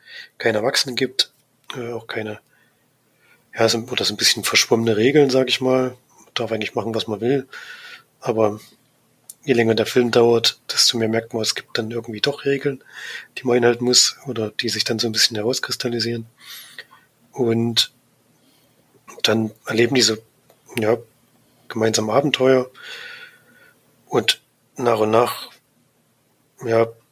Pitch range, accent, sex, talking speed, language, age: 110-130 Hz, German, male, 145 wpm, German, 30-49